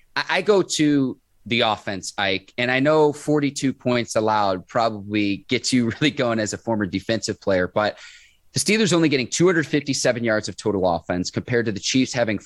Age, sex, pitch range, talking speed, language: 30-49, male, 115-150 Hz, 180 wpm, English